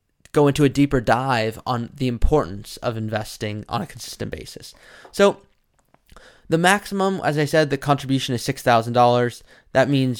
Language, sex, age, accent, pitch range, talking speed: English, male, 20-39, American, 120-155 Hz, 165 wpm